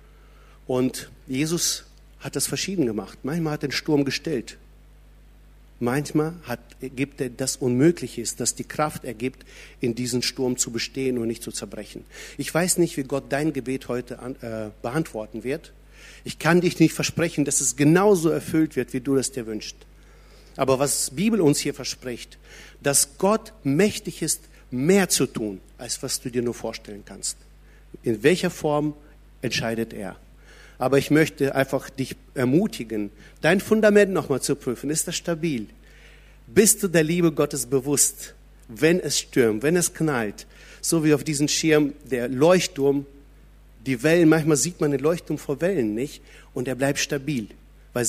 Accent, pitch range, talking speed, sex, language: German, 125-155 Hz, 165 wpm, male, German